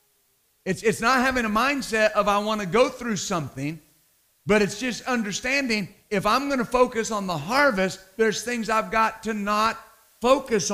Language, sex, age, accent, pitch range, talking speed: English, male, 50-69, American, 165-220 Hz, 180 wpm